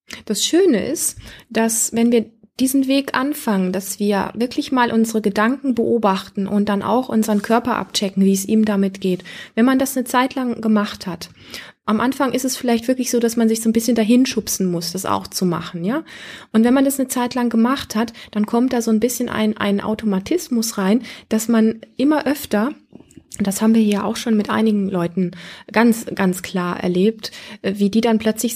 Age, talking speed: 20-39, 200 wpm